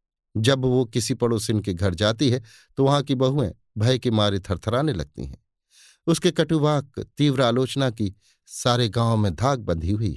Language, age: Hindi, 50-69